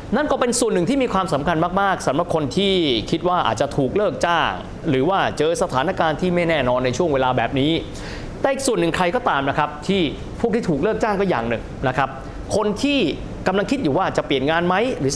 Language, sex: Thai, male